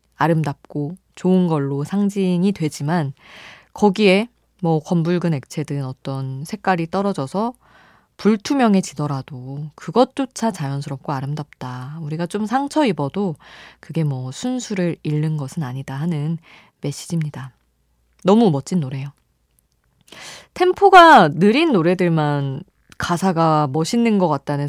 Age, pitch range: 20-39, 145-200 Hz